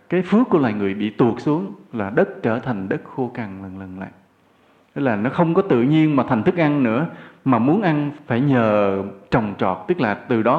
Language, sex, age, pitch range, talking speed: English, male, 20-39, 110-155 Hz, 230 wpm